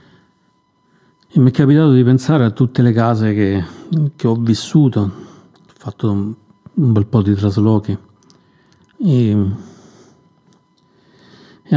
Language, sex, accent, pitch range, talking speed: Italian, male, native, 100-125 Hz, 120 wpm